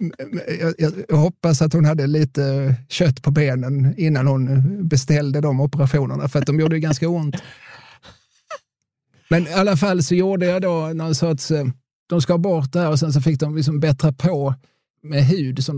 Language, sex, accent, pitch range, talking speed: Swedish, male, native, 130-155 Hz, 185 wpm